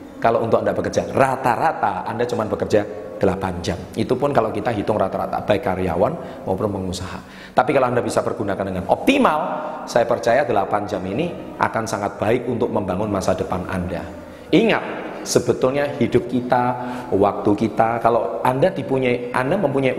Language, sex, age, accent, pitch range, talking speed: Indonesian, male, 30-49, native, 100-140 Hz, 155 wpm